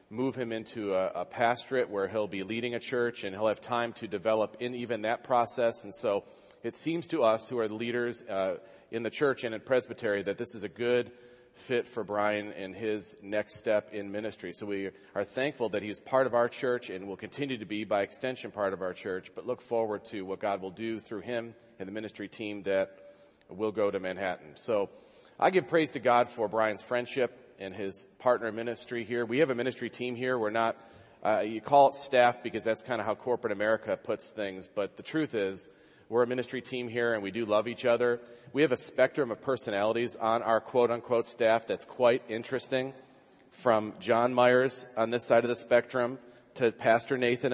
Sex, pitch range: male, 105-125 Hz